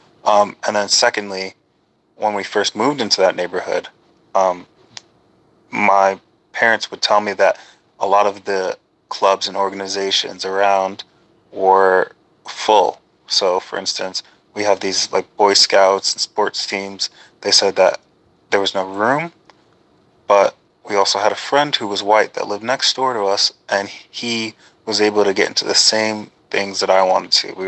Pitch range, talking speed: 95-105 Hz, 165 wpm